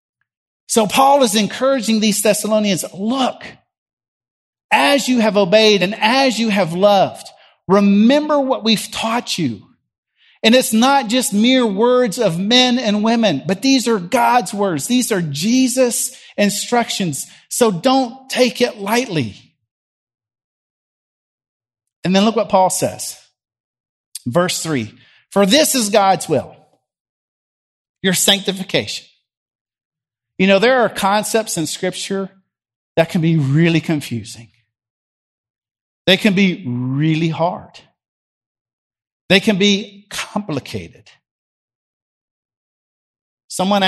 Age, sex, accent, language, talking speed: 40-59, male, American, English, 110 wpm